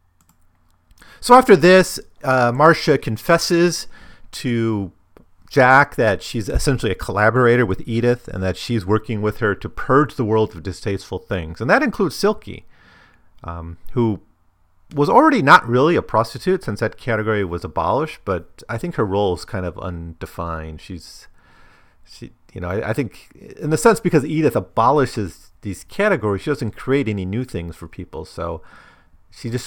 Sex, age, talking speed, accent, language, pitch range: male, 40-59, 160 wpm, American, English, 85-120 Hz